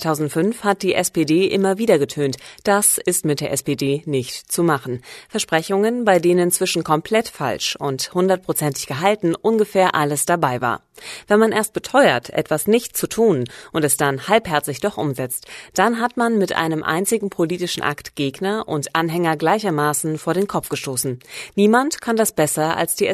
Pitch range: 145-200 Hz